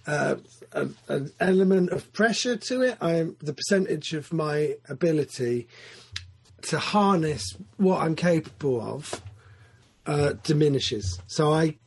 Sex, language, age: male, English, 40-59